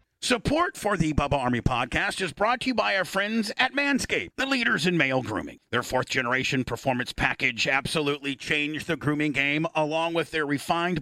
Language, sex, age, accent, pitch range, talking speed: English, male, 50-69, American, 155-195 Hz, 180 wpm